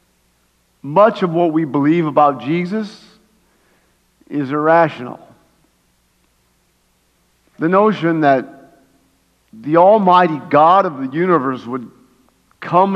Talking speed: 95 wpm